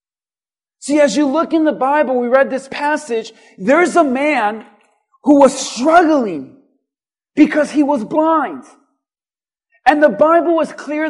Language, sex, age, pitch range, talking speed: English, male, 40-59, 260-310 Hz, 140 wpm